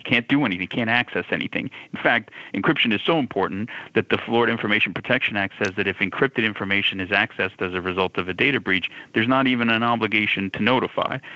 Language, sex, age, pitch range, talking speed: English, male, 40-59, 95-105 Hz, 205 wpm